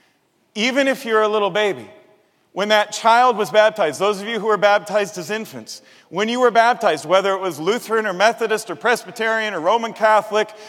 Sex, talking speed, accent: male, 190 wpm, American